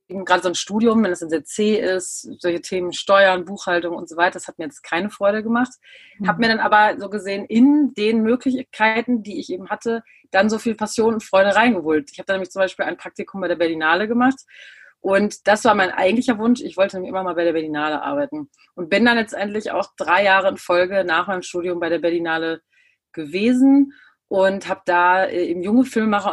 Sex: female